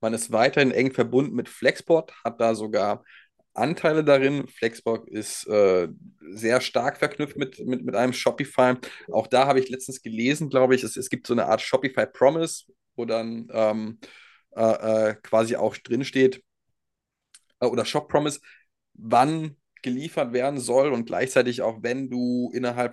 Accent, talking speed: German, 160 wpm